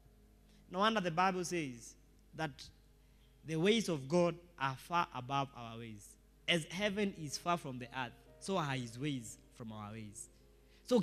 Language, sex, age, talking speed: English, male, 20-39, 165 wpm